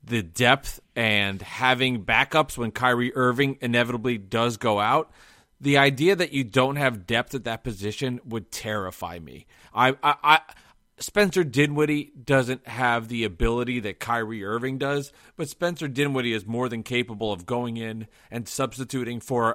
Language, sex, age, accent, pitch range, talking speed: English, male, 30-49, American, 115-140 Hz, 155 wpm